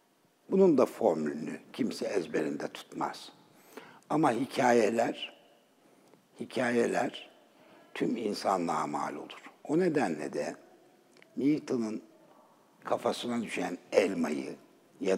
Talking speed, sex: 85 wpm, male